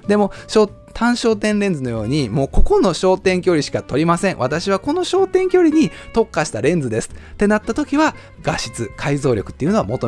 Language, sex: Japanese, male